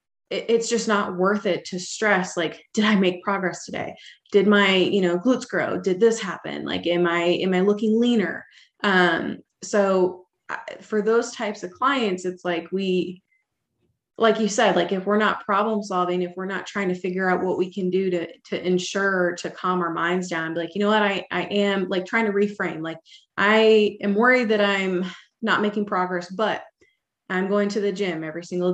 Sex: female